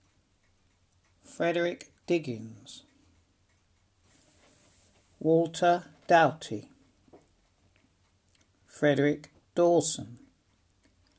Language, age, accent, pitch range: English, 60-79, British, 95-150 Hz